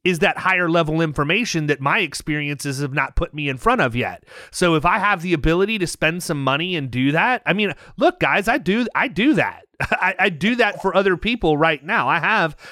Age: 30-49